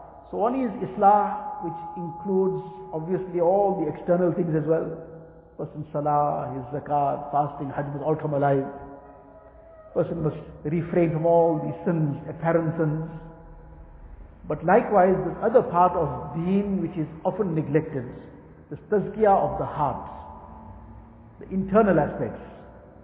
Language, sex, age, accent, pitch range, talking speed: English, male, 60-79, Indian, 155-205 Hz, 130 wpm